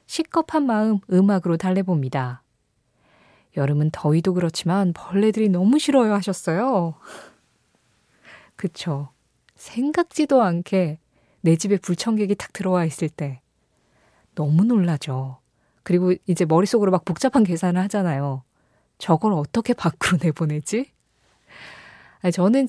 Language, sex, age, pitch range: Korean, female, 20-39, 160-230 Hz